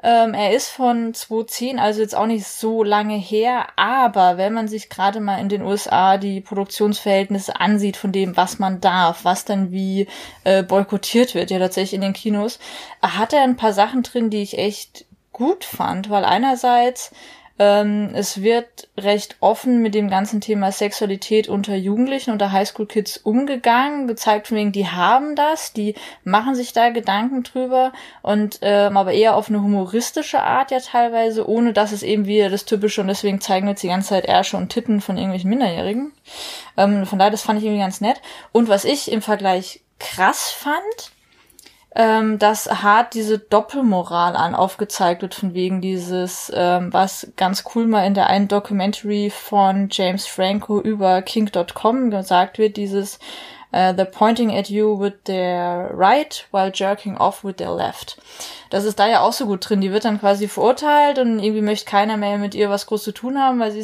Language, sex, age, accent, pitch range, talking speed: German, female, 20-39, German, 195-225 Hz, 180 wpm